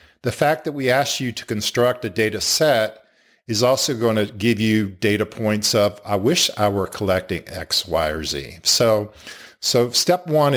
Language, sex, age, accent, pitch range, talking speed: English, male, 50-69, American, 105-120 Hz, 185 wpm